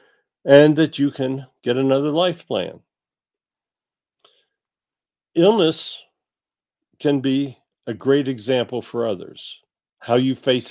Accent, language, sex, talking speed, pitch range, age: American, English, male, 105 wpm, 115-140 Hz, 50-69